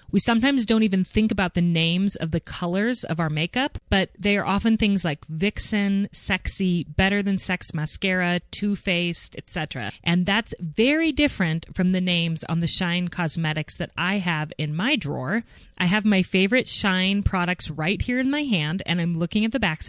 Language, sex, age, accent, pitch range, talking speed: English, female, 30-49, American, 165-200 Hz, 190 wpm